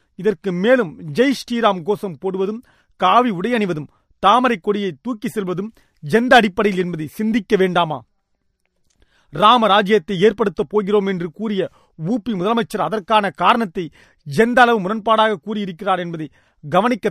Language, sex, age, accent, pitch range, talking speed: Tamil, male, 40-59, native, 185-230 Hz, 115 wpm